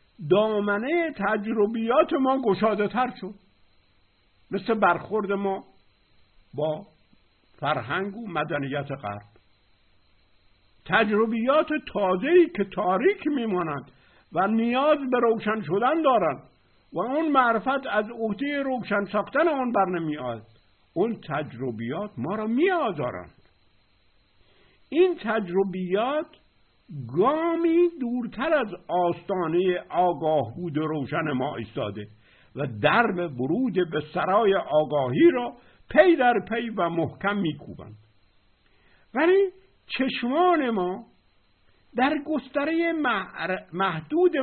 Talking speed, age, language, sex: 95 wpm, 60-79, Persian, male